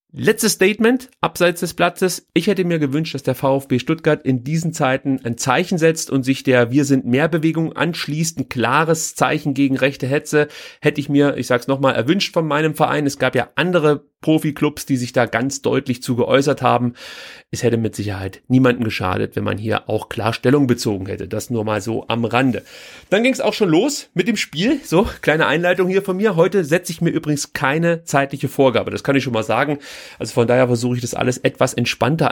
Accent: German